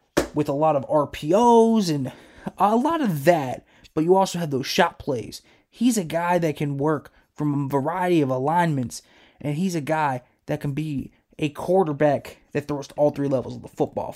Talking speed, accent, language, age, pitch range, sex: 195 wpm, American, English, 20-39, 145-180 Hz, male